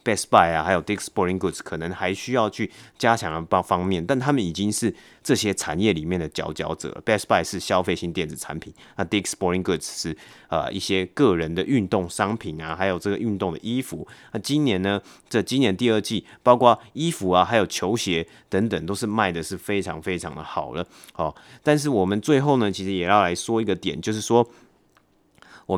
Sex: male